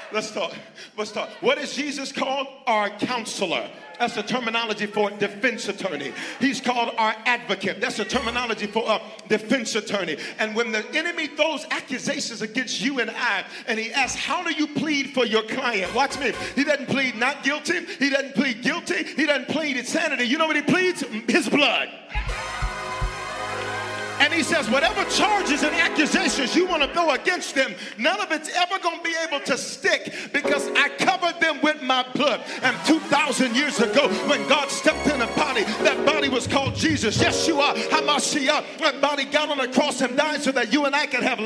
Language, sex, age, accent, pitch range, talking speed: English, male, 40-59, American, 230-300 Hz, 195 wpm